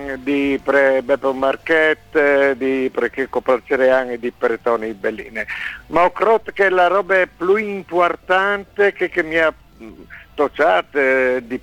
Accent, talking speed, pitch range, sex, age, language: Italian, 135 wpm, 135-175 Hz, male, 60-79, English